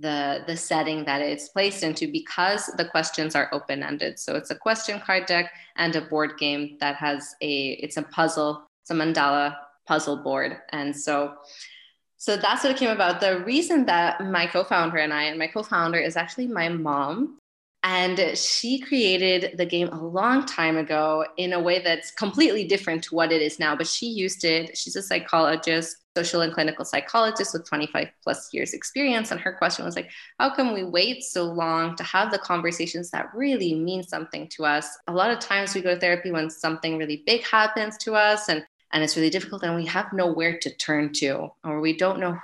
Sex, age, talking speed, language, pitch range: female, 20-39, 200 wpm, English, 155-190 Hz